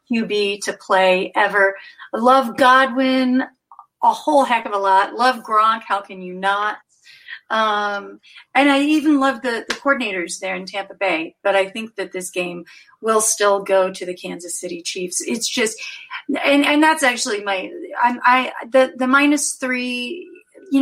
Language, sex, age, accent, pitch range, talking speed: English, female, 40-59, American, 200-265 Hz, 165 wpm